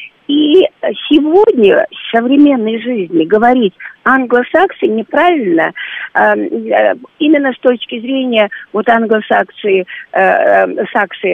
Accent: native